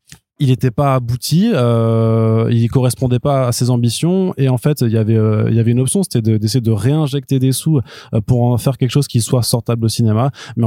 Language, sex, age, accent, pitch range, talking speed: French, male, 20-39, French, 105-125 Hz, 220 wpm